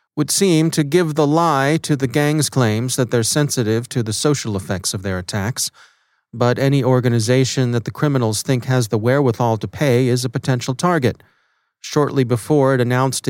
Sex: male